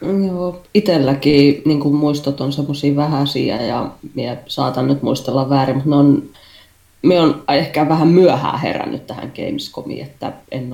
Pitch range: 130-155 Hz